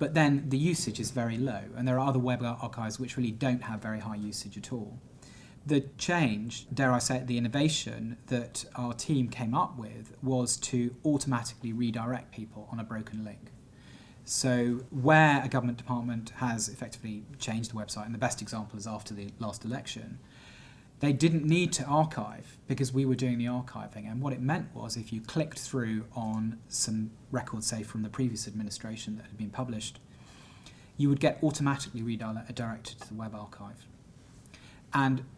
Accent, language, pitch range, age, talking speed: British, English, 110-130 Hz, 30-49, 180 wpm